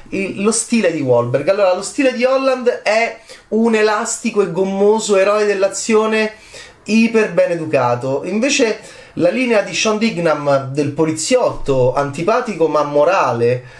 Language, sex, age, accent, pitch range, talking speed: Italian, male, 30-49, native, 145-220 Hz, 130 wpm